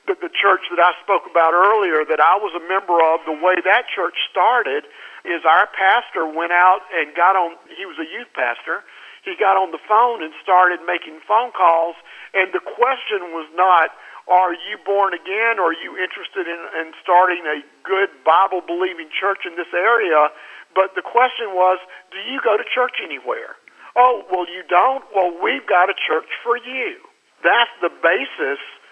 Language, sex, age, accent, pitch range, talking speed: English, male, 50-69, American, 175-235 Hz, 185 wpm